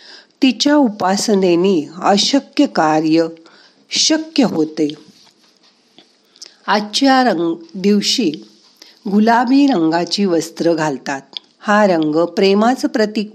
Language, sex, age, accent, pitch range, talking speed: Marathi, female, 50-69, native, 165-230 Hz, 75 wpm